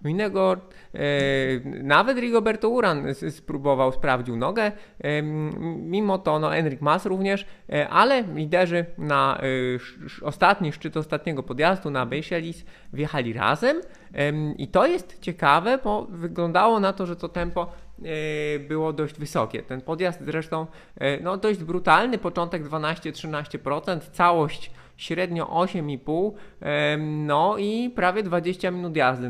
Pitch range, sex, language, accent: 145-185 Hz, male, Polish, native